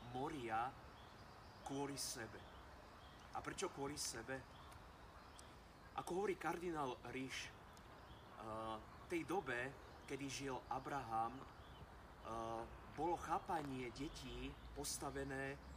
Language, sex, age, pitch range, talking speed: Slovak, male, 30-49, 110-140 Hz, 80 wpm